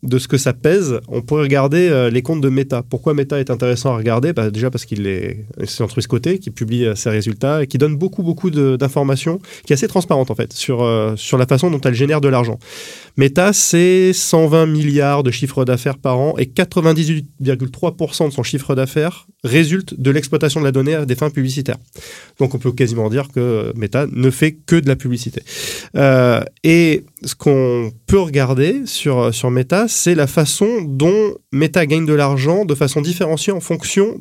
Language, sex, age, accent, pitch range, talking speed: French, male, 30-49, French, 125-155 Hz, 200 wpm